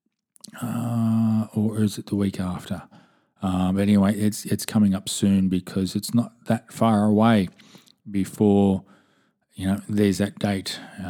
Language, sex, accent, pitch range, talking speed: English, male, Australian, 95-115 Hz, 145 wpm